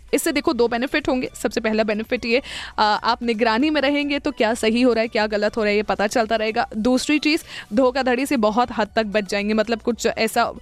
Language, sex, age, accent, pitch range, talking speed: Hindi, female, 20-39, native, 220-260 Hz, 225 wpm